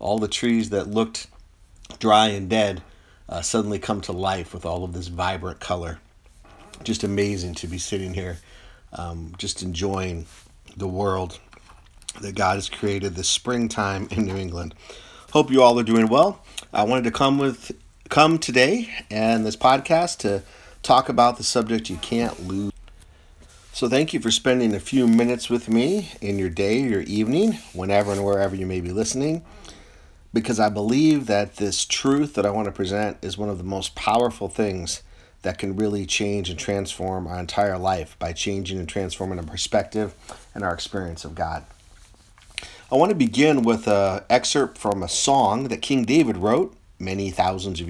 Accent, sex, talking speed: American, male, 175 wpm